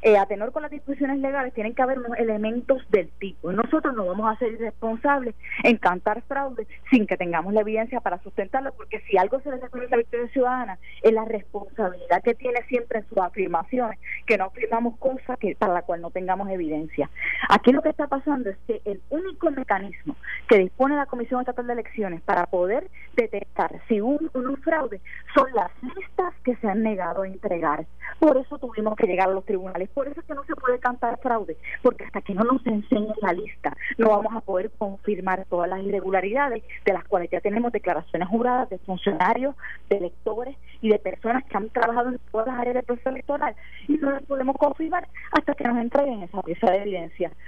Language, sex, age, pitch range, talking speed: Spanish, female, 30-49, 195-255 Hz, 205 wpm